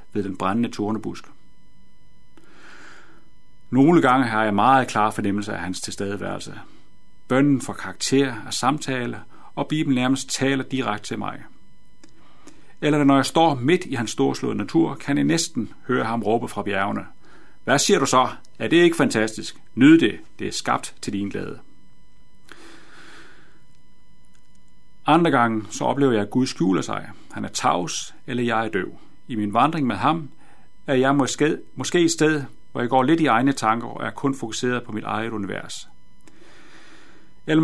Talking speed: 160 wpm